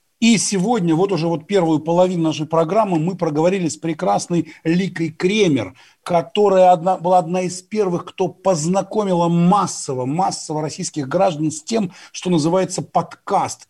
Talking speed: 135 wpm